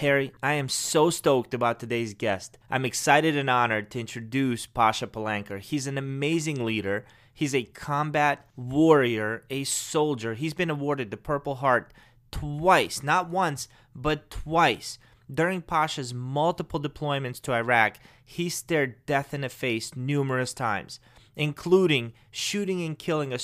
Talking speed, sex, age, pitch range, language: 145 wpm, male, 30-49, 120-155 Hz, English